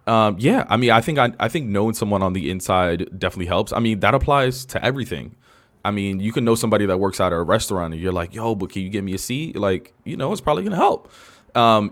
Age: 20-39